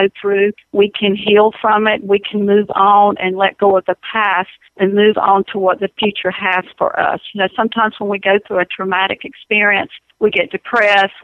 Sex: female